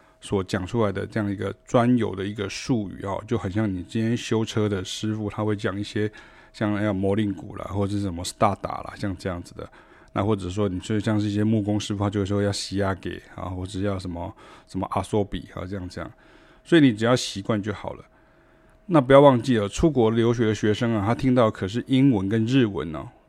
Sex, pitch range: male, 95-115 Hz